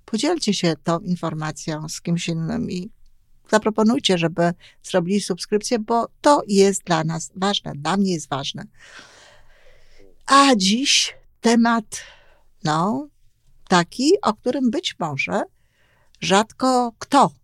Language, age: Polish, 50-69